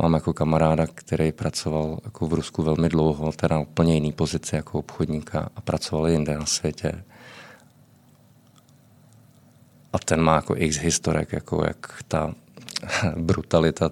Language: Czech